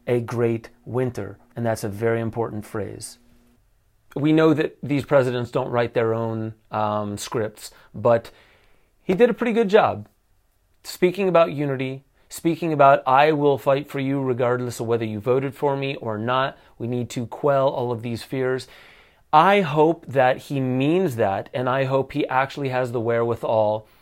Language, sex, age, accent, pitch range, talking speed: English, male, 30-49, American, 115-145 Hz, 170 wpm